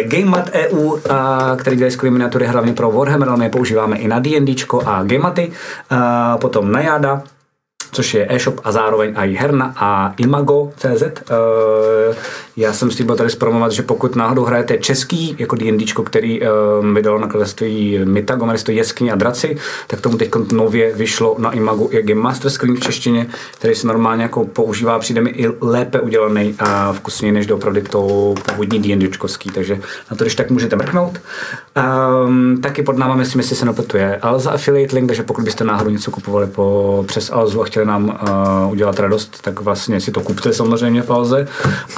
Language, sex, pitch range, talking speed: Czech, male, 100-125 Hz, 170 wpm